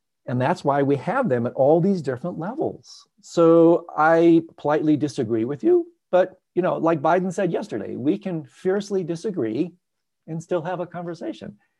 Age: 50-69